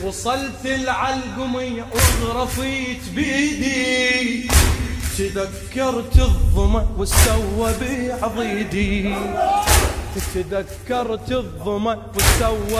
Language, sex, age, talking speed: Arabic, male, 20-39, 65 wpm